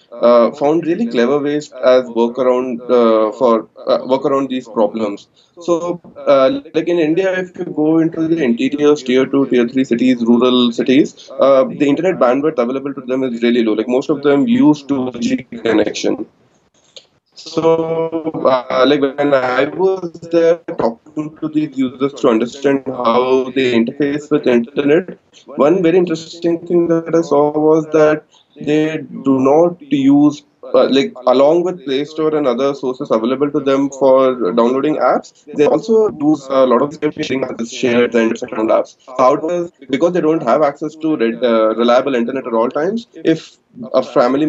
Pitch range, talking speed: 125-160 Hz, 175 wpm